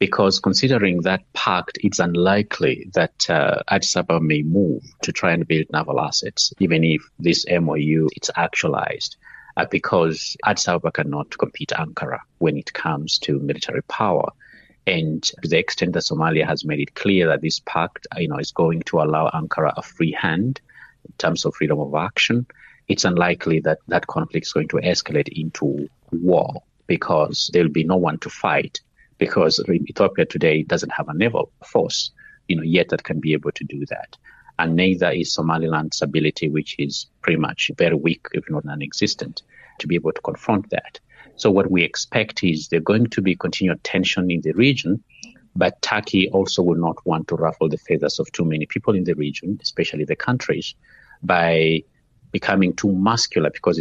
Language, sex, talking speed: English, male, 180 wpm